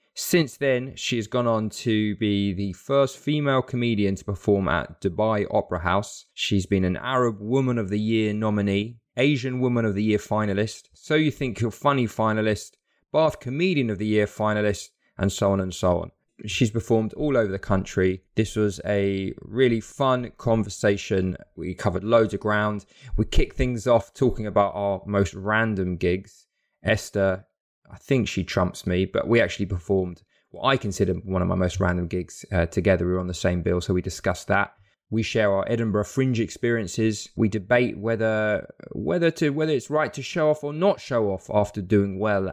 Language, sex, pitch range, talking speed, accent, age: English, male, 100-120 Hz, 190 wpm, British, 20-39